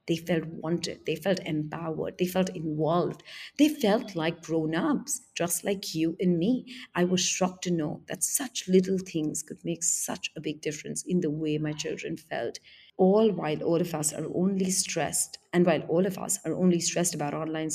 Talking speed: 195 wpm